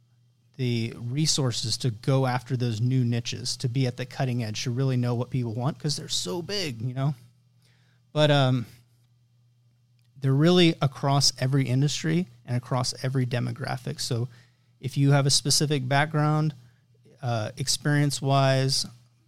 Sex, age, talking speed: male, 30-49, 145 wpm